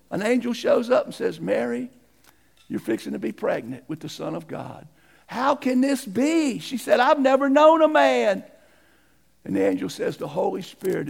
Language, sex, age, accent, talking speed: English, male, 50-69, American, 190 wpm